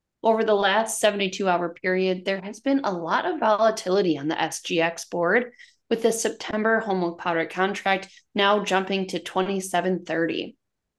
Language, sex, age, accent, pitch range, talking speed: English, female, 20-39, American, 180-225 Hz, 150 wpm